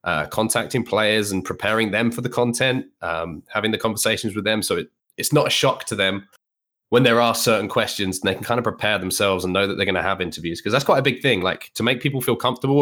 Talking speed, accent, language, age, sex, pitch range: 255 wpm, British, English, 20-39, male, 100-120 Hz